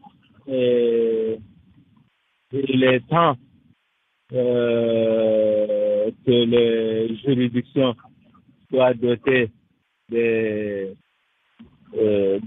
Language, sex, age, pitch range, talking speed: French, male, 50-69, 115-140 Hz, 60 wpm